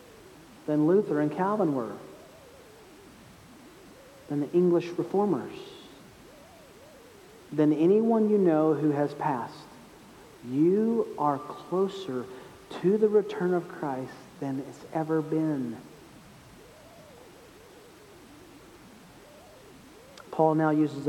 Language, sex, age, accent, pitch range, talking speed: English, male, 40-59, American, 150-210 Hz, 90 wpm